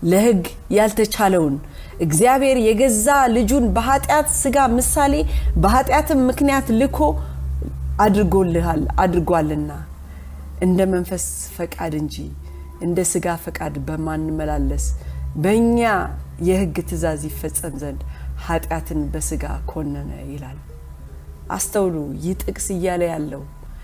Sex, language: female, Amharic